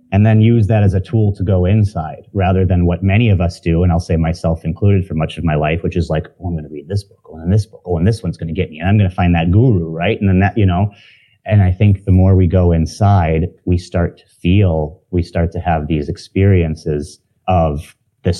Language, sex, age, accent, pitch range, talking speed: English, male, 30-49, American, 80-95 Hz, 270 wpm